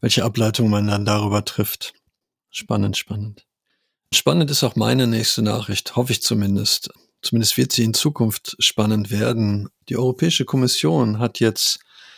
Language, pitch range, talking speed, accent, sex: German, 105-120 Hz, 145 wpm, German, male